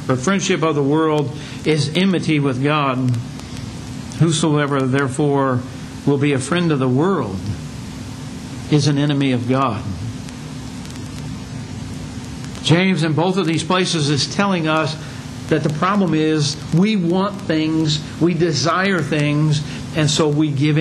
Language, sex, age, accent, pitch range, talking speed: English, male, 60-79, American, 130-190 Hz, 135 wpm